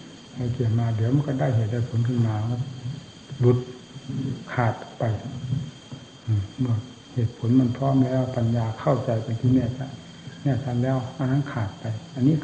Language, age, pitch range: Thai, 60-79, 115-135 Hz